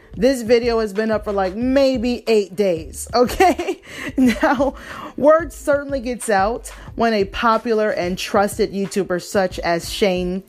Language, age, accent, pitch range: English, 30-49, American, 190-260 Hz